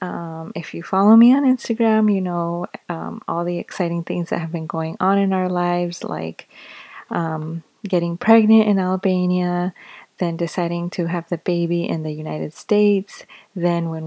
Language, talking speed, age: English, 170 wpm, 20-39